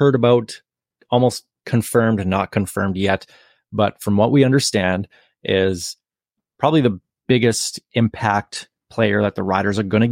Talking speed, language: 140 wpm, English